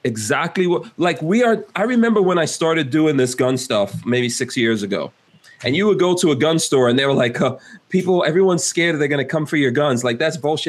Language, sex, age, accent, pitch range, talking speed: English, male, 30-49, American, 120-160 Hz, 240 wpm